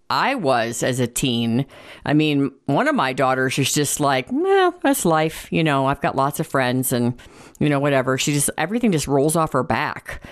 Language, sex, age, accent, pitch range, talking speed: English, female, 50-69, American, 135-175 Hz, 210 wpm